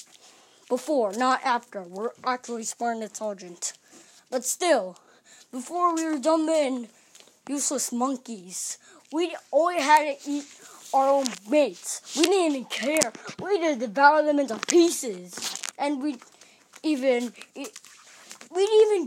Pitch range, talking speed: 245-315 Hz, 130 wpm